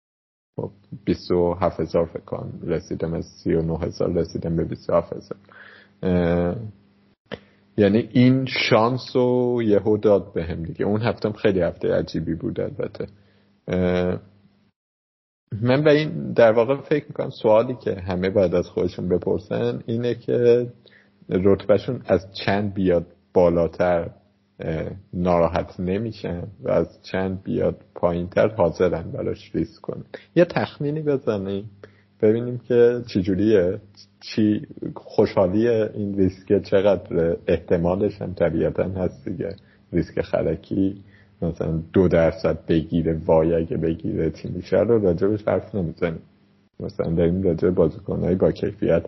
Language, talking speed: Persian, 125 wpm